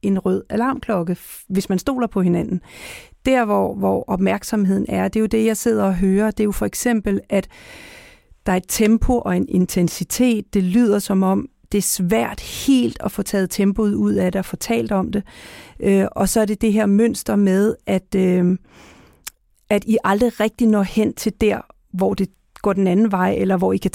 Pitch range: 190-225 Hz